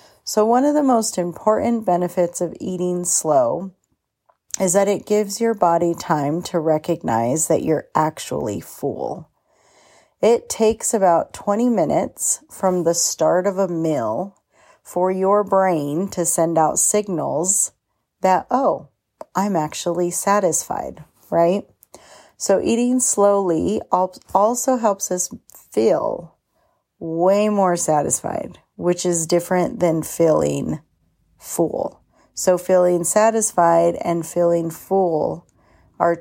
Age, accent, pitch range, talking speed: 40-59, American, 165-195 Hz, 115 wpm